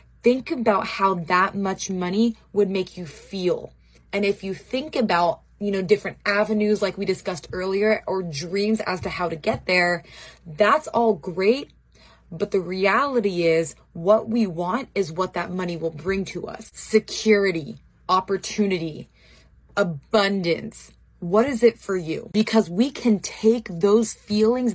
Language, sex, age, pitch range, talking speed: English, female, 20-39, 180-220 Hz, 155 wpm